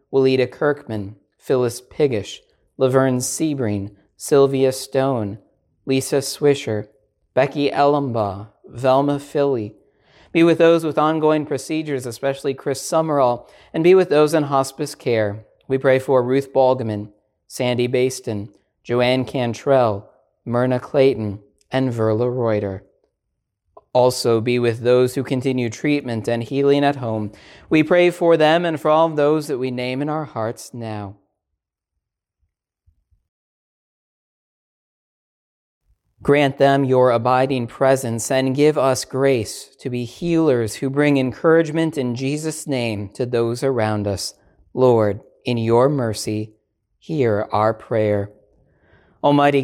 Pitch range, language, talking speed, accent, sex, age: 115-140 Hz, English, 120 wpm, American, male, 40-59